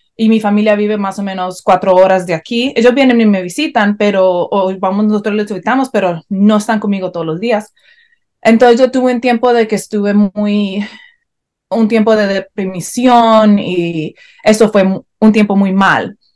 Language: Spanish